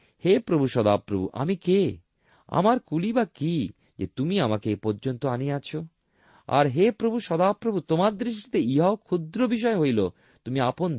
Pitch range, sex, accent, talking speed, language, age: 115-185 Hz, male, native, 145 wpm, Bengali, 40-59